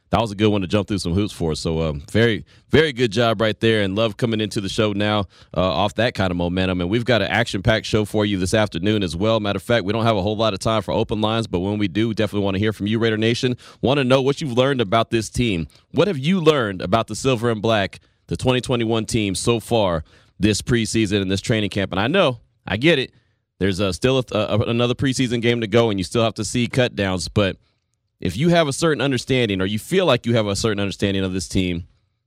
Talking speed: 265 wpm